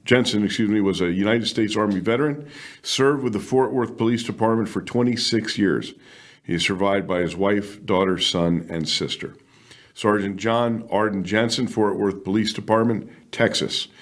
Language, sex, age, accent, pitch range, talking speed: English, male, 50-69, American, 95-120 Hz, 165 wpm